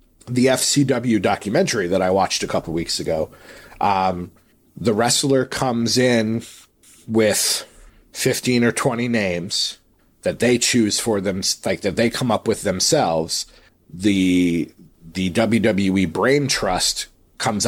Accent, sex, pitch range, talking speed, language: American, male, 100-125 Hz, 130 wpm, English